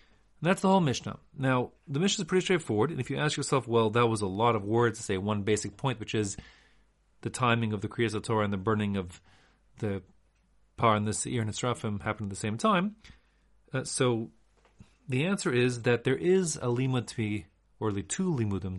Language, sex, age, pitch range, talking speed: English, male, 40-59, 105-140 Hz, 215 wpm